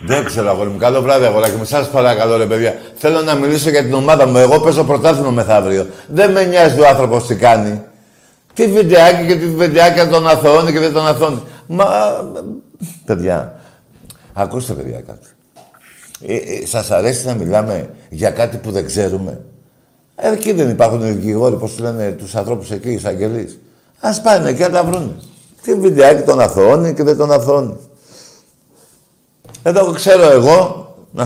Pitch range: 115-170 Hz